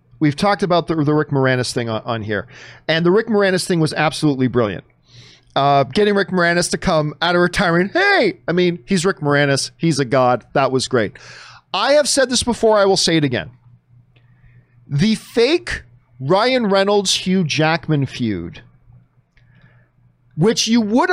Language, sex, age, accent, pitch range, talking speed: English, male, 40-59, American, 130-200 Hz, 170 wpm